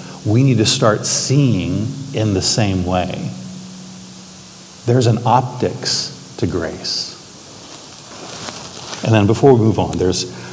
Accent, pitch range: American, 100-125 Hz